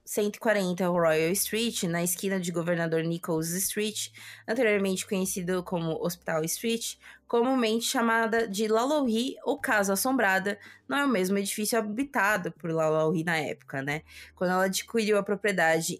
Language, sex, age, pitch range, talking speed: Portuguese, female, 20-39, 175-235 Hz, 140 wpm